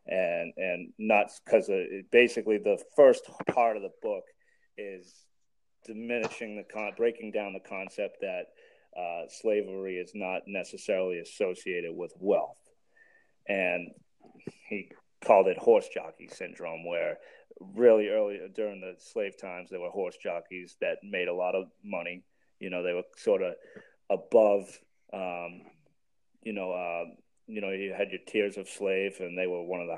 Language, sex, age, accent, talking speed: English, male, 30-49, American, 150 wpm